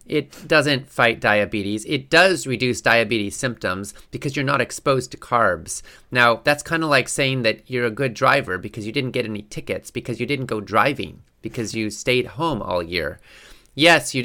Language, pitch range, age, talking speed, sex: English, 110-145 Hz, 30-49, 190 wpm, male